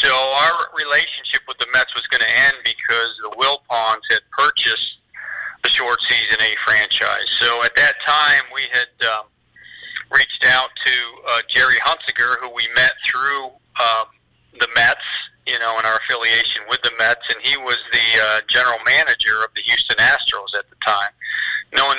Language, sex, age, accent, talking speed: English, male, 40-59, American, 170 wpm